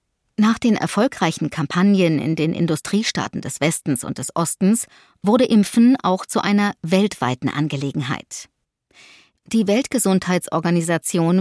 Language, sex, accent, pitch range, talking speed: German, female, German, 155-210 Hz, 110 wpm